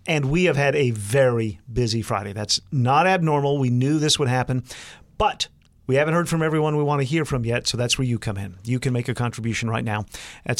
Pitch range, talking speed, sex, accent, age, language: 125-160 Hz, 240 wpm, male, American, 50-69, English